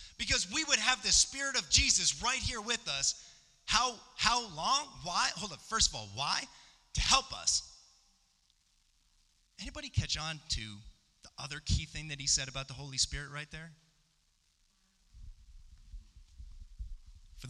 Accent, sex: American, male